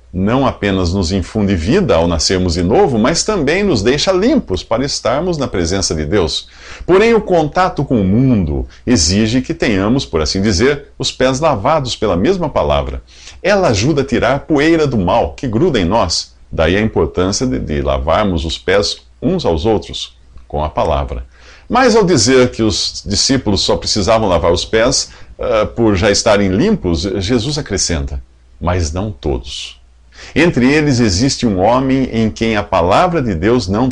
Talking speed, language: 170 wpm, Portuguese